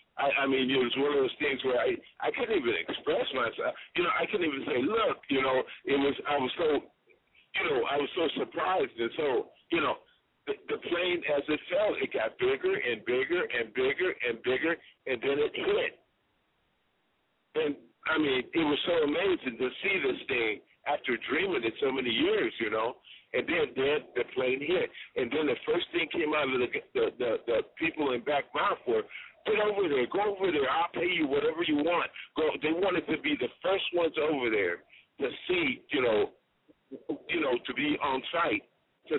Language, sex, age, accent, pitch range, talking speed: English, male, 50-69, American, 320-435 Hz, 205 wpm